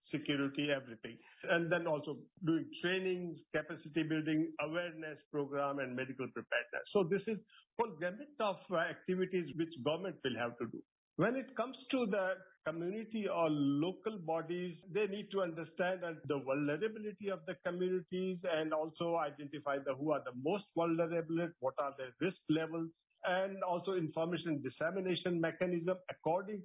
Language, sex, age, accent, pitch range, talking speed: English, male, 50-69, Indian, 150-185 Hz, 155 wpm